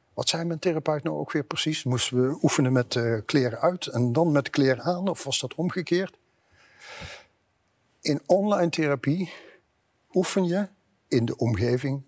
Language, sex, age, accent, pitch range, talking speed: Dutch, male, 60-79, Dutch, 120-155 Hz, 160 wpm